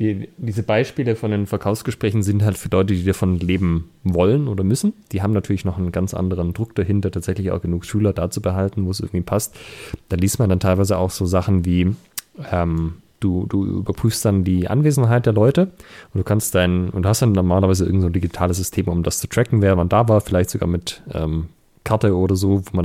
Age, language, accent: 30-49, German, German